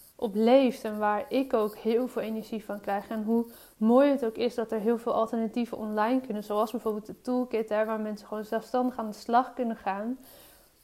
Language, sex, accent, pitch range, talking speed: Dutch, female, Dutch, 210-235 Hz, 205 wpm